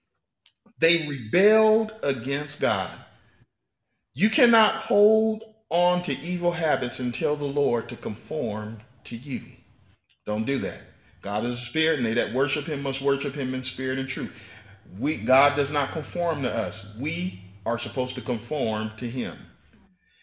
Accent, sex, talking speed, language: American, male, 150 wpm, English